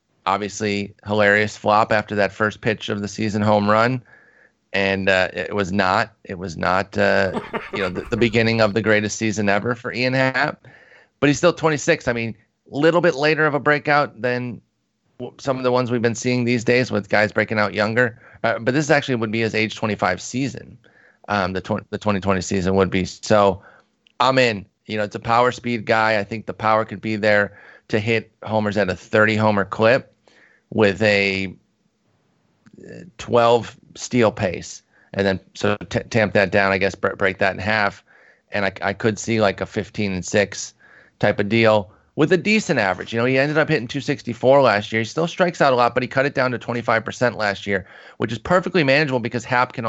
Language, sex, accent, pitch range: English, male, American, 105-125 Hz